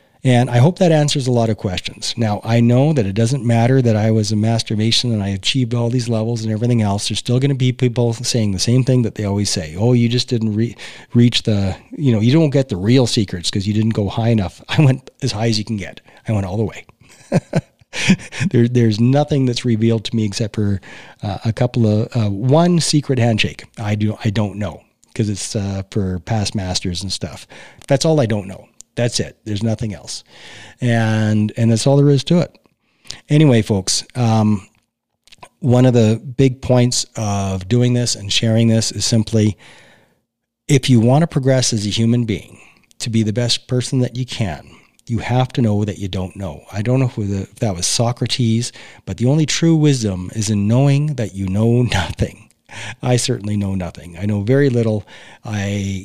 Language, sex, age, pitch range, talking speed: English, male, 40-59, 105-125 Hz, 210 wpm